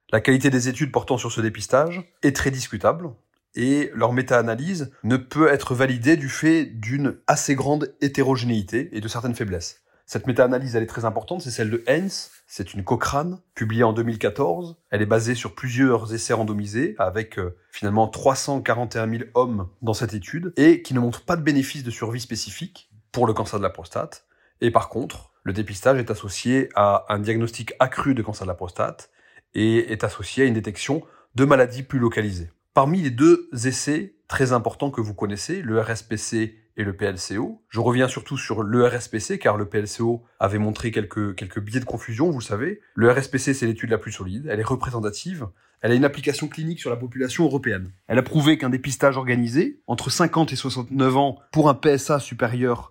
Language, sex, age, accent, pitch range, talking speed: French, male, 30-49, French, 110-140 Hz, 190 wpm